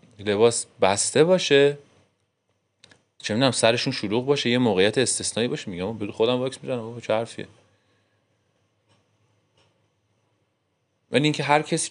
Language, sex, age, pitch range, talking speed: Persian, male, 30-49, 100-140 Hz, 100 wpm